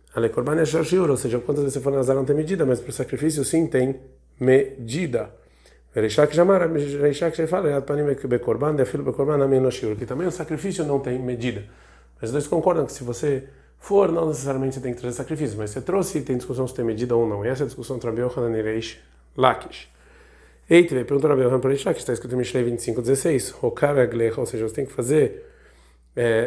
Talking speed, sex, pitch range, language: 195 wpm, male, 120-150 Hz, Portuguese